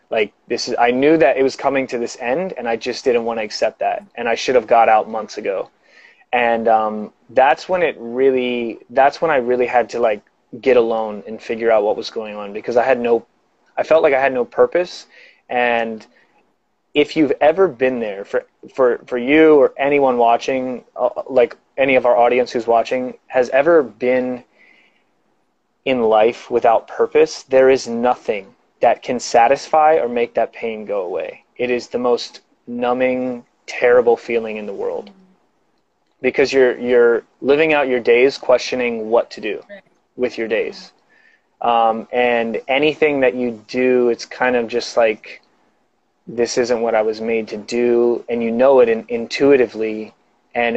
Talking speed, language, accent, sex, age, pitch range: 175 wpm, English, American, male, 20-39, 115-155 Hz